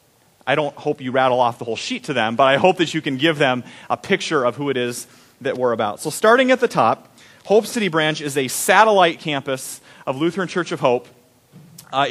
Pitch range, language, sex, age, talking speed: 130-175 Hz, English, male, 30-49, 230 wpm